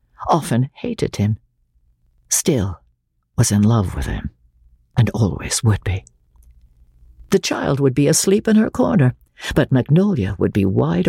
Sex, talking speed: female, 140 wpm